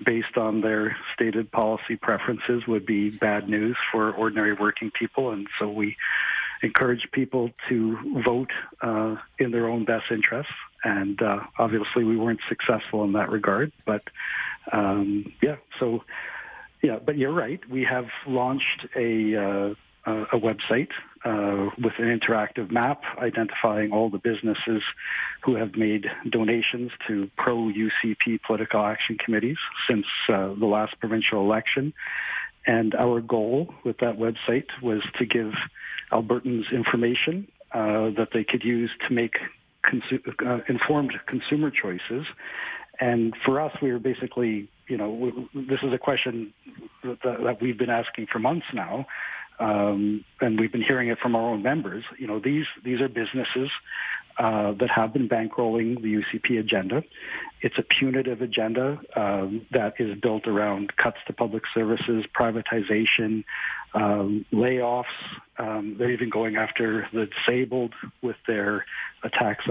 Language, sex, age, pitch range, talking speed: English, male, 60-79, 110-125 Hz, 145 wpm